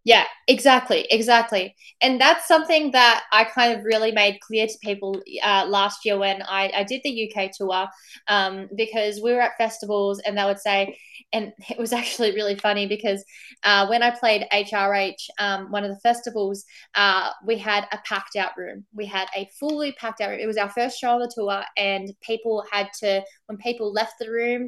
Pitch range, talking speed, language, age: 200-240 Hz, 200 wpm, English, 20-39